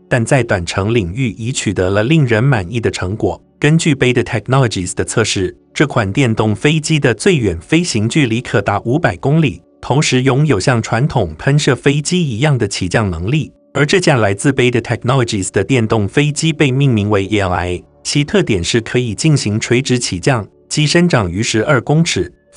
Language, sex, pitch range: Chinese, male, 105-150 Hz